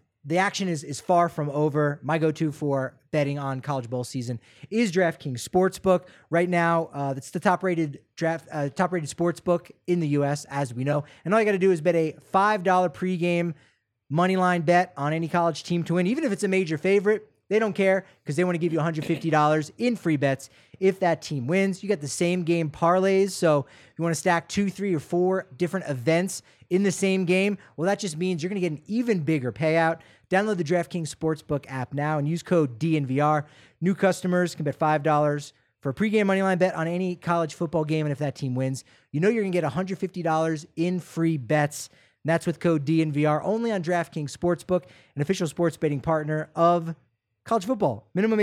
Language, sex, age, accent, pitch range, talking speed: English, male, 30-49, American, 150-185 Hz, 205 wpm